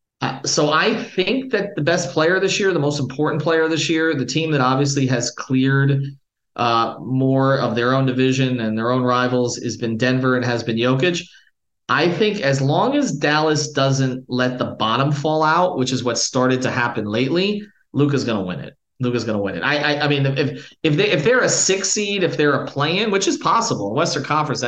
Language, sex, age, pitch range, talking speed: English, male, 30-49, 130-165 Hz, 215 wpm